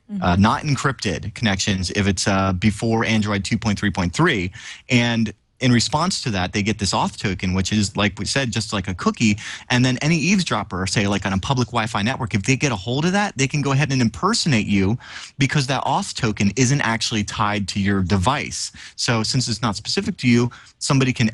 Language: English